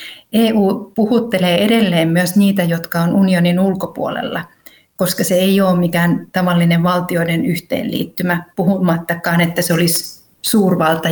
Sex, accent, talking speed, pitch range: female, native, 120 wpm, 170-200 Hz